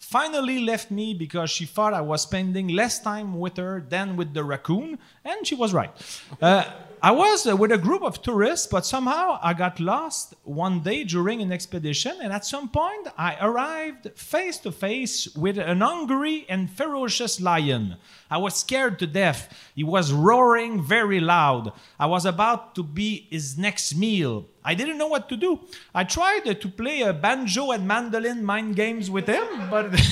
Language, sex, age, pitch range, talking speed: French, male, 40-59, 180-265 Hz, 185 wpm